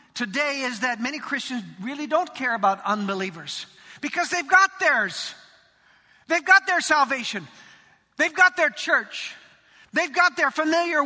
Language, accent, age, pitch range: English, American, 50-69, 255-340 Hz